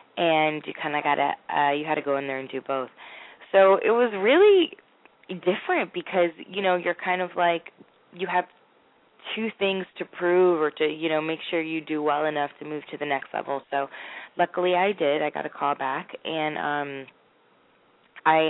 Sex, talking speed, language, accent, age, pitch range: female, 200 wpm, English, American, 20-39, 145-180 Hz